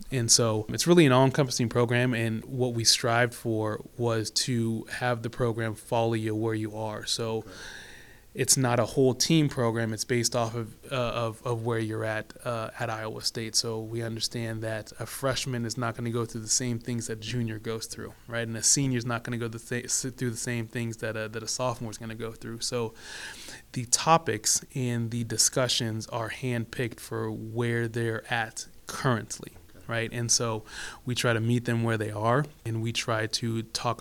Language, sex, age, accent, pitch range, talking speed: English, male, 20-39, American, 110-120 Hz, 205 wpm